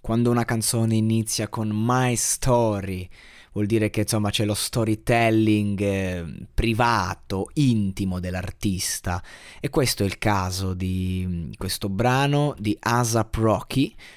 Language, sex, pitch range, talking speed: Italian, male, 100-125 Hz, 125 wpm